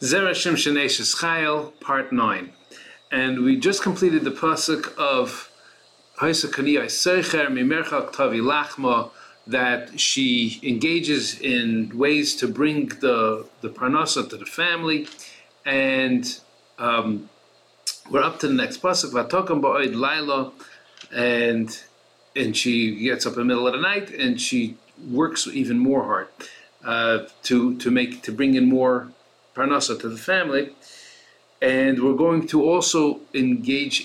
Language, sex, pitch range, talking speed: English, male, 125-175 Hz, 120 wpm